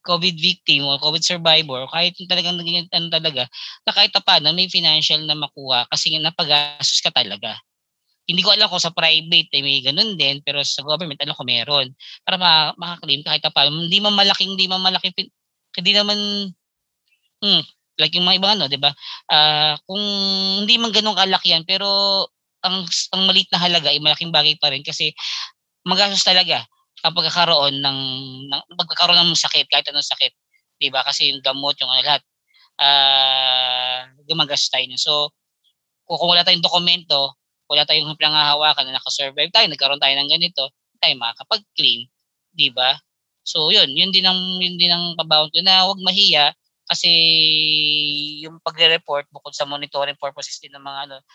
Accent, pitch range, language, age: Filipino, 140-180 Hz, English, 20-39